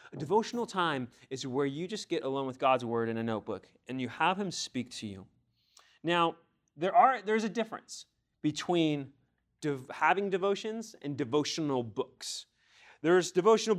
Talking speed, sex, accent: 155 wpm, male, American